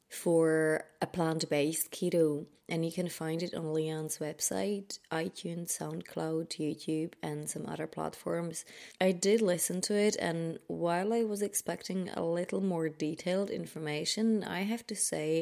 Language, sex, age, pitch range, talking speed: English, female, 20-39, 155-185 Hz, 150 wpm